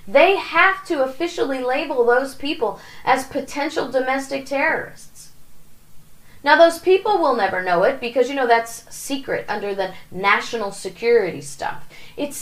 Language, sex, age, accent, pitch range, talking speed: English, female, 30-49, American, 220-335 Hz, 140 wpm